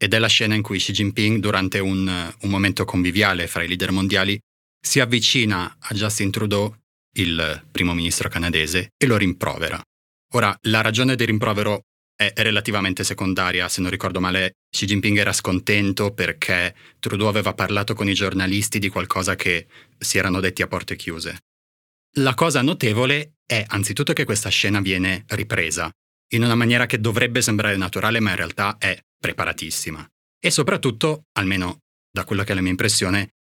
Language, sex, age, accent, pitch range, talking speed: Italian, male, 30-49, native, 95-115 Hz, 165 wpm